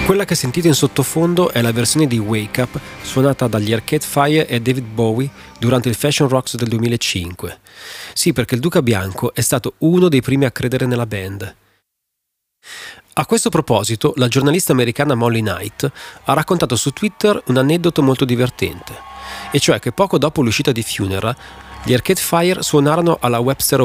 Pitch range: 110-145 Hz